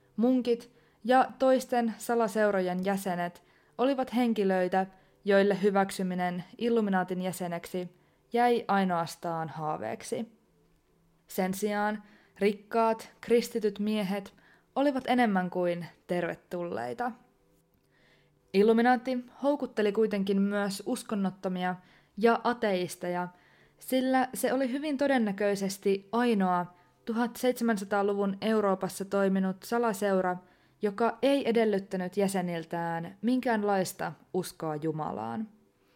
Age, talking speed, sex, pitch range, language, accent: 20-39, 80 wpm, female, 180-230 Hz, Finnish, native